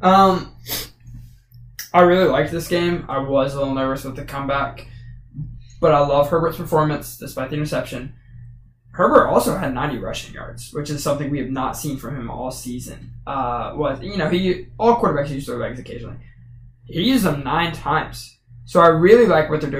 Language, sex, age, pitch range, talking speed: English, male, 20-39, 120-160 Hz, 185 wpm